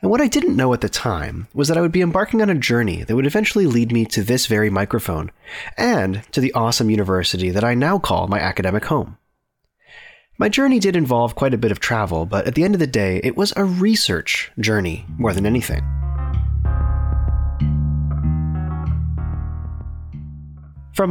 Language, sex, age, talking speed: English, male, 30-49, 180 wpm